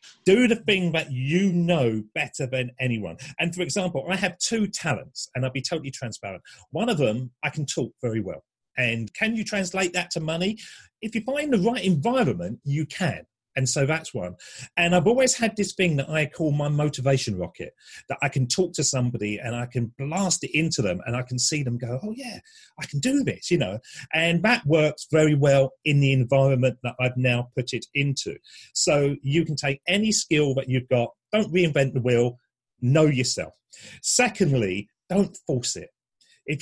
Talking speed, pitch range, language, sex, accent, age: 200 wpm, 120-170 Hz, English, male, British, 40-59